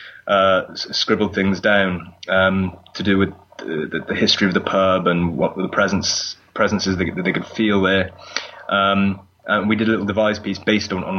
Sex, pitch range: male, 95-110 Hz